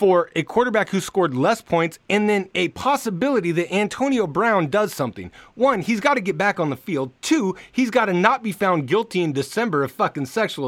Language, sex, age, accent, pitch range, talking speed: English, male, 30-49, American, 175-250 Hz, 215 wpm